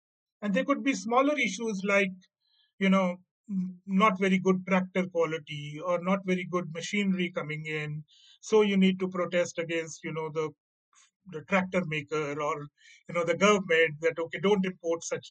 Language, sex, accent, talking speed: English, male, Indian, 165 wpm